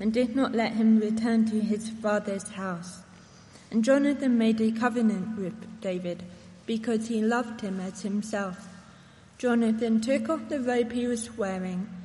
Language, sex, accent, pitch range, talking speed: English, female, British, 200-230 Hz, 155 wpm